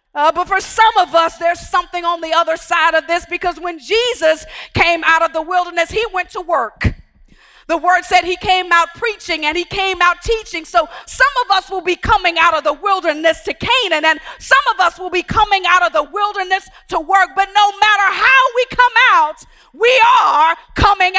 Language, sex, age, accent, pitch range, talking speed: English, female, 40-59, American, 345-435 Hz, 210 wpm